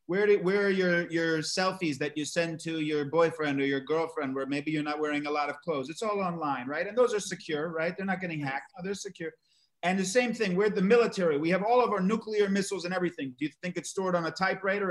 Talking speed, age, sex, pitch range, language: 260 wpm, 30-49, male, 150-190 Hz, English